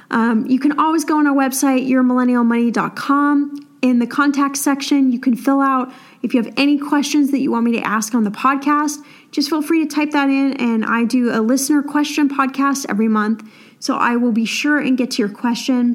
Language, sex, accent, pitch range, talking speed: English, female, American, 235-280 Hz, 215 wpm